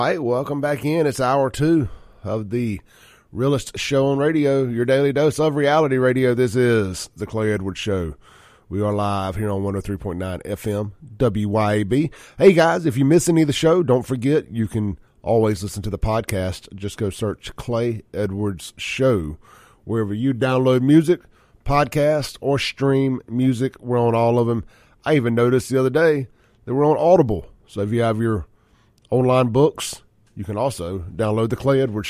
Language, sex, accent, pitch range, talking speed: English, male, American, 105-135 Hz, 175 wpm